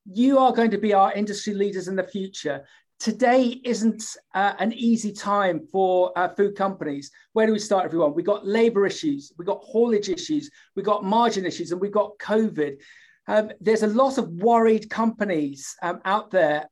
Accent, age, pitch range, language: British, 40-59, 190-235 Hz, English